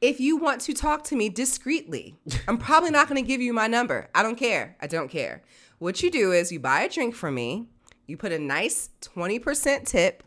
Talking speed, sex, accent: 230 wpm, female, American